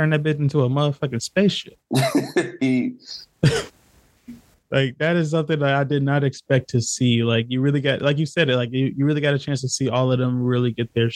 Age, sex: 20-39, male